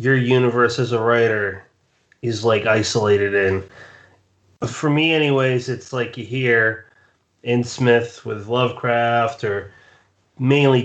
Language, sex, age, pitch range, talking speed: English, male, 30-49, 120-145 Hz, 120 wpm